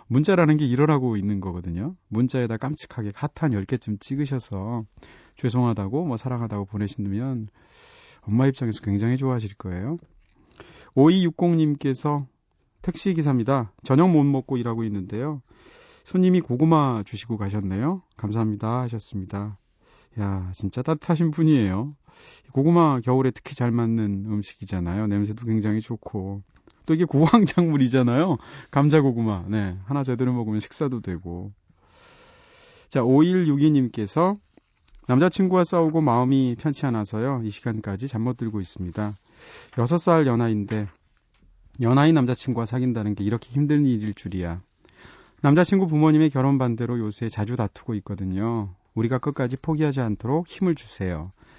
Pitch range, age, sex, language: 105-145 Hz, 30-49, male, Korean